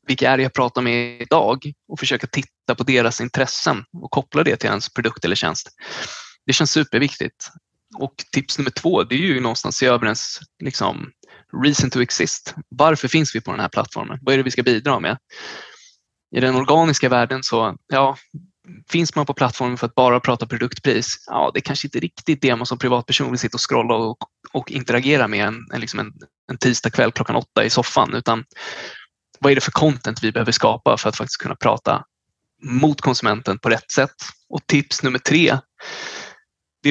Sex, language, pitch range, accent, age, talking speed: male, Swedish, 120-145 Hz, native, 20-39, 190 wpm